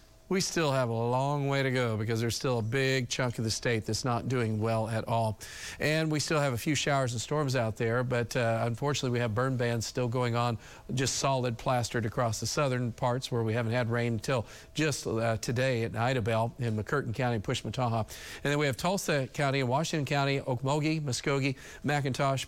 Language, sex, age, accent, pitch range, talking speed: English, male, 40-59, American, 120-145 Hz, 210 wpm